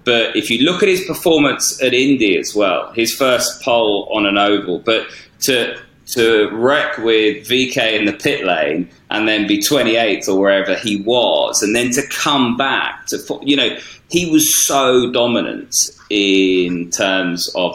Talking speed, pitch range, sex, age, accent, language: 170 wpm, 100-135 Hz, male, 30-49, British, English